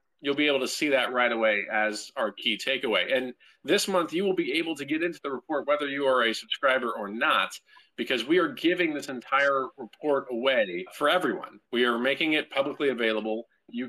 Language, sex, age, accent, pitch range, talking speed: English, male, 40-59, American, 115-140 Hz, 205 wpm